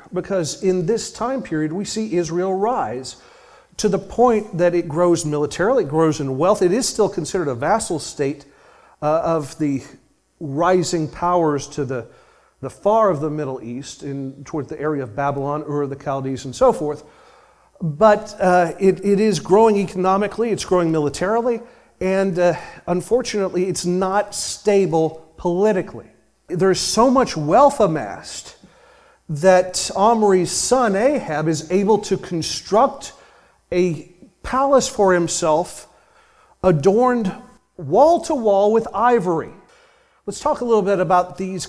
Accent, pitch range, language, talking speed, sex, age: American, 160-210 Hz, English, 145 wpm, male, 40-59